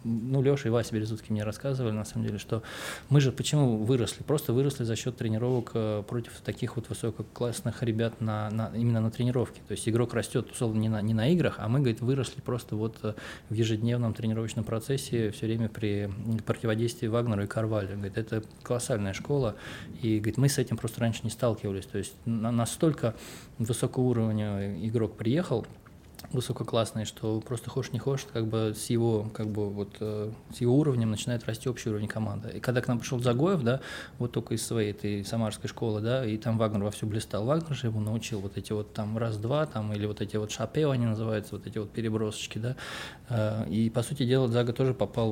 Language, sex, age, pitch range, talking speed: Russian, male, 20-39, 110-125 Hz, 195 wpm